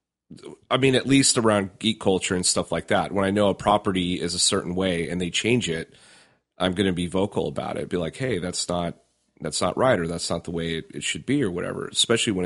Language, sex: English, male